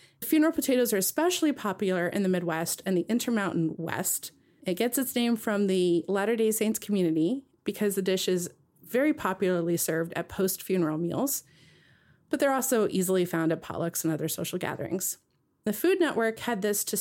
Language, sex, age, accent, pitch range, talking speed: English, female, 30-49, American, 170-240 Hz, 170 wpm